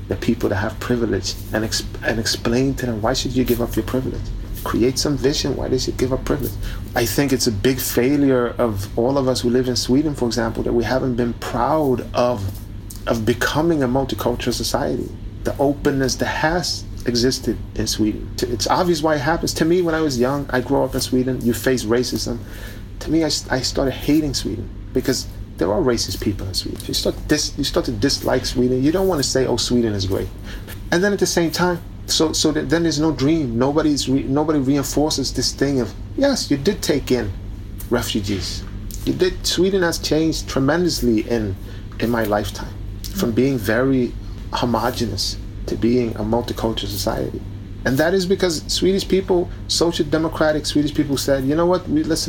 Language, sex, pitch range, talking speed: Finnish, male, 105-140 Hz, 195 wpm